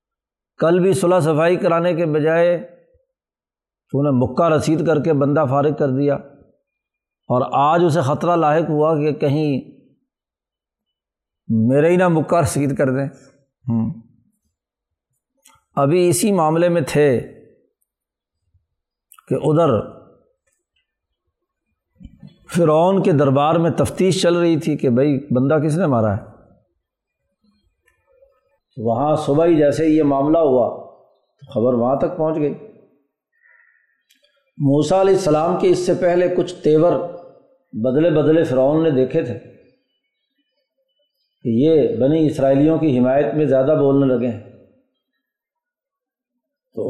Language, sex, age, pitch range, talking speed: Urdu, male, 60-79, 140-190 Hz, 120 wpm